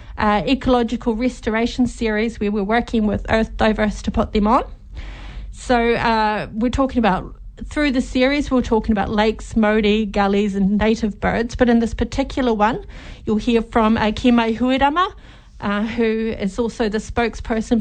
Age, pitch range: 40-59, 210-240 Hz